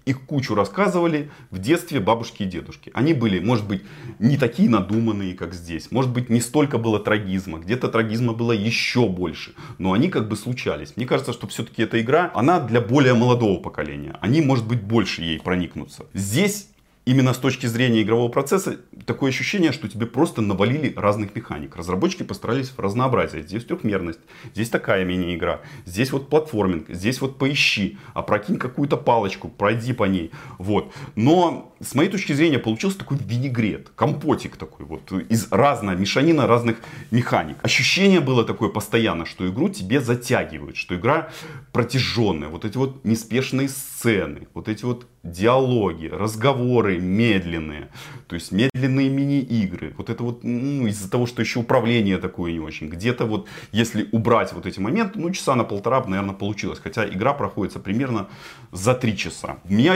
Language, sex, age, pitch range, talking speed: Russian, male, 30-49, 100-135 Hz, 160 wpm